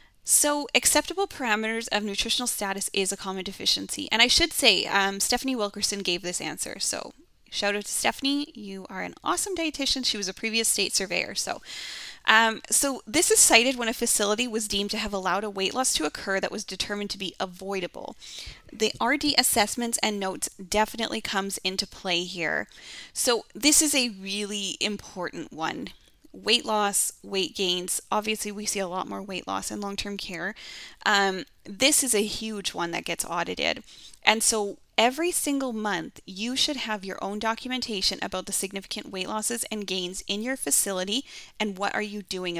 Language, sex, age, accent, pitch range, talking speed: English, female, 10-29, American, 195-245 Hz, 180 wpm